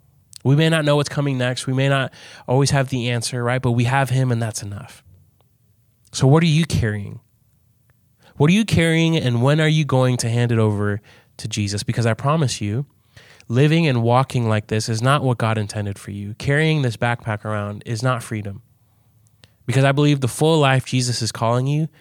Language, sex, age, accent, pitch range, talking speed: English, male, 20-39, American, 115-140 Hz, 205 wpm